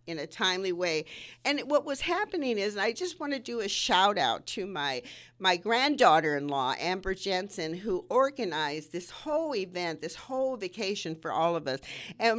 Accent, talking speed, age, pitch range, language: American, 180 wpm, 50-69, 155-220 Hz, English